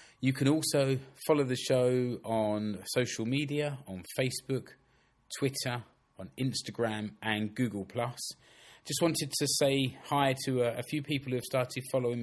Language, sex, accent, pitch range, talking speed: English, male, British, 115-140 Hz, 145 wpm